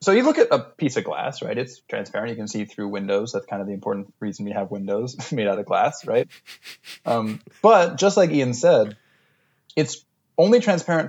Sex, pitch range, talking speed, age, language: male, 105-160 Hz, 210 wpm, 20-39, English